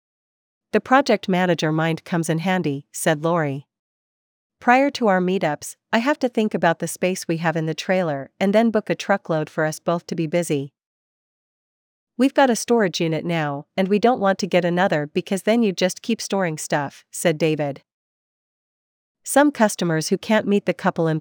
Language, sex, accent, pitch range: English, female, American, 160-205 Hz